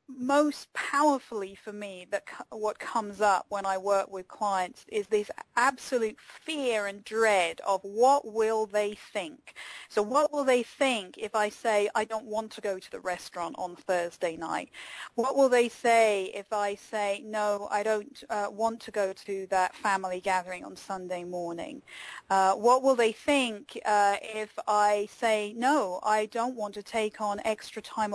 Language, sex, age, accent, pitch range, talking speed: English, female, 40-59, British, 210-275 Hz, 175 wpm